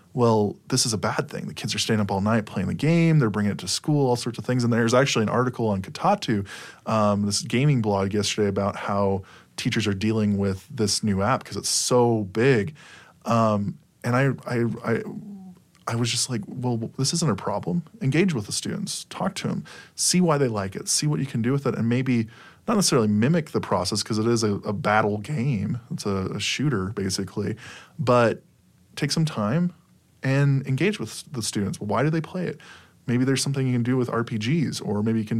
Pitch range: 105-135 Hz